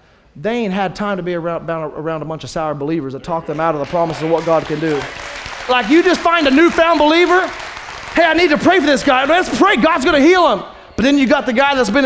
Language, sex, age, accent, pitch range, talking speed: English, male, 30-49, American, 165-235 Hz, 275 wpm